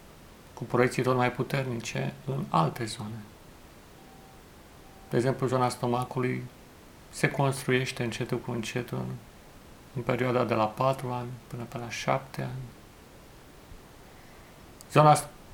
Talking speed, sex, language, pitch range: 110 wpm, male, Romanian, 120-135 Hz